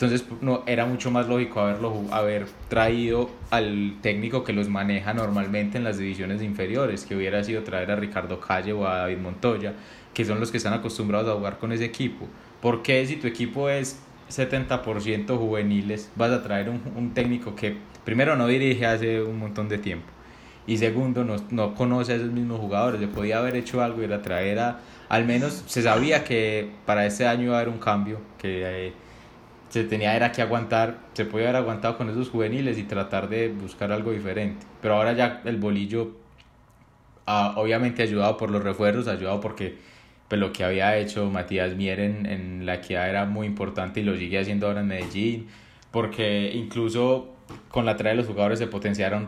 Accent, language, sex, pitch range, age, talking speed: Colombian, Spanish, male, 100-120 Hz, 20-39, 195 wpm